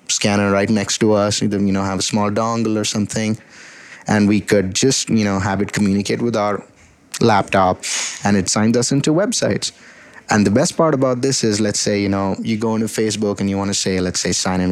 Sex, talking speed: male, 225 wpm